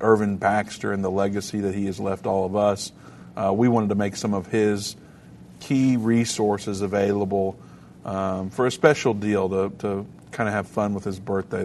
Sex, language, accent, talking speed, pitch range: male, English, American, 185 wpm, 100-110 Hz